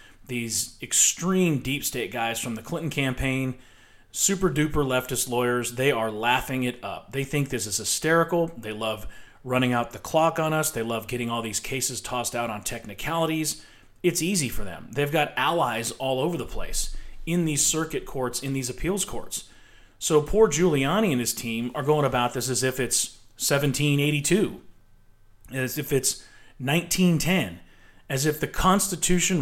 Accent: American